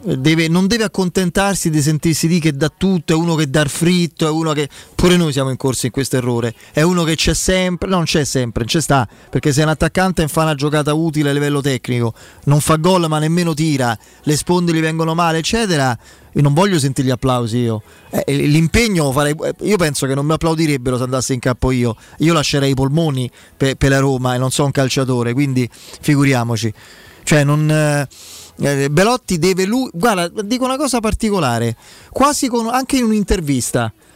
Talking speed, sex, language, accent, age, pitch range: 200 wpm, male, Italian, native, 20-39, 135-185 Hz